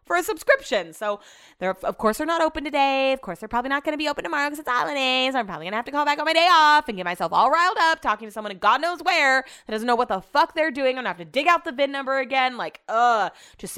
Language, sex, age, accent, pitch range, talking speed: English, female, 20-39, American, 185-280 Hz, 300 wpm